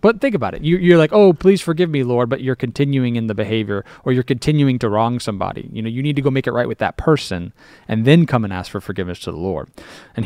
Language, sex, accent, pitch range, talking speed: English, male, American, 115-155 Hz, 275 wpm